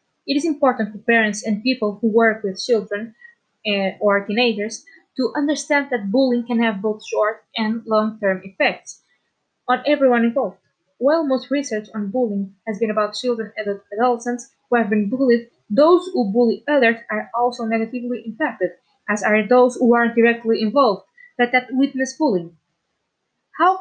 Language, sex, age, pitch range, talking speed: English, female, 20-39, 220-260 Hz, 155 wpm